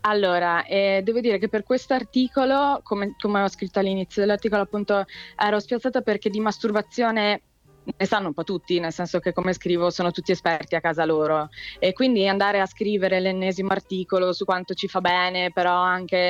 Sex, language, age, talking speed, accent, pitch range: female, Italian, 20-39, 185 wpm, native, 180-215 Hz